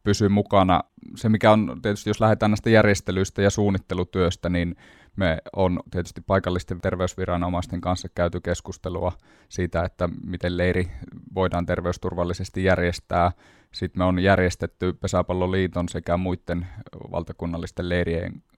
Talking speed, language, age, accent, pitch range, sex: 120 wpm, Finnish, 20-39, native, 85-95 Hz, male